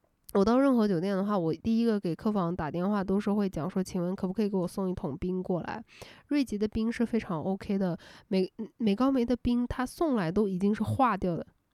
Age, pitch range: 10-29, 190-240 Hz